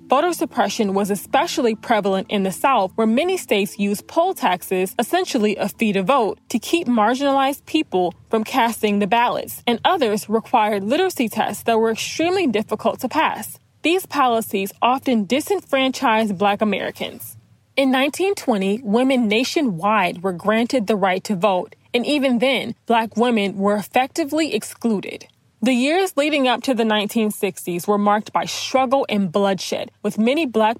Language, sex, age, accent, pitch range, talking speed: English, female, 20-39, American, 210-265 Hz, 150 wpm